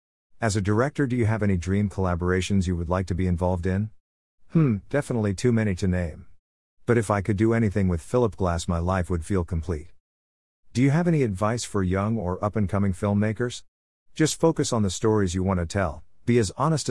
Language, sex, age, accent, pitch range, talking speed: English, male, 50-69, American, 90-115 Hz, 205 wpm